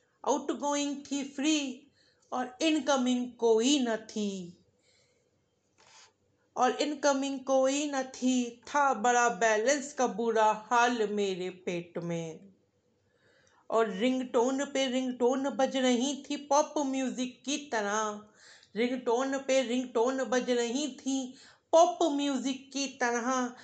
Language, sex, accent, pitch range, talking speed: Hindi, female, native, 225-280 Hz, 110 wpm